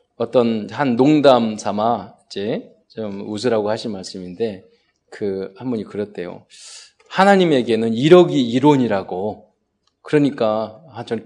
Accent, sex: native, male